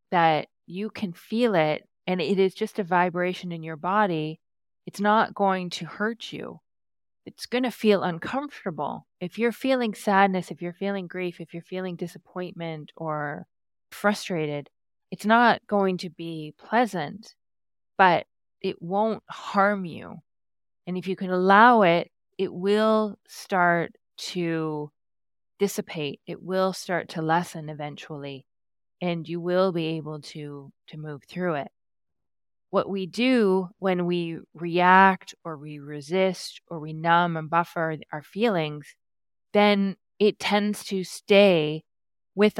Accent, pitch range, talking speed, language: American, 160-200 Hz, 140 wpm, English